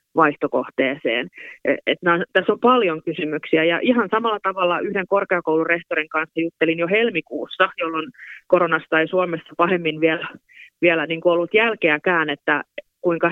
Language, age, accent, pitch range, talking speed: Finnish, 30-49, native, 155-180 Hz, 125 wpm